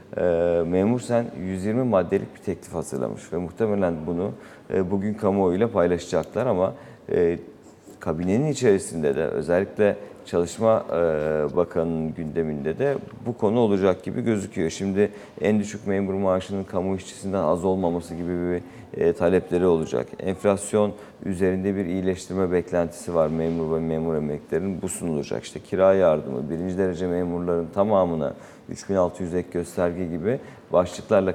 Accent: native